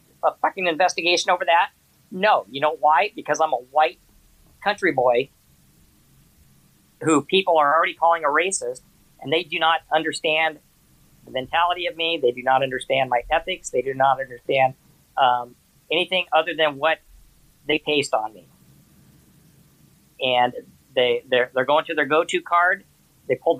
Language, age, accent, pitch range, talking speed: English, 50-69, American, 140-180 Hz, 160 wpm